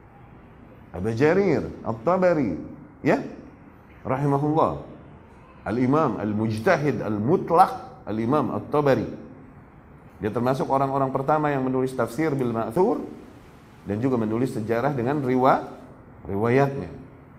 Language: Indonesian